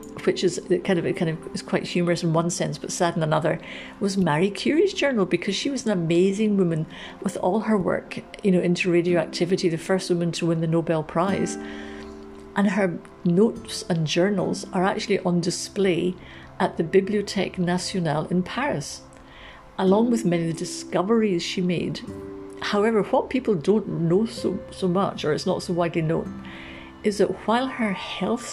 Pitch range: 165-195 Hz